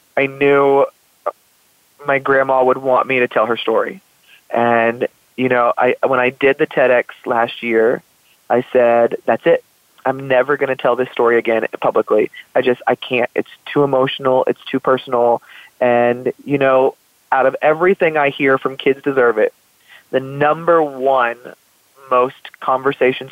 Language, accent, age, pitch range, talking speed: English, American, 20-39, 125-145 Hz, 160 wpm